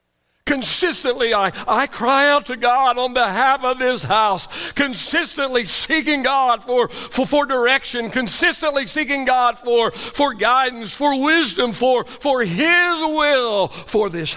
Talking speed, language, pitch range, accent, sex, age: 140 wpm, English, 205-275 Hz, American, male, 60-79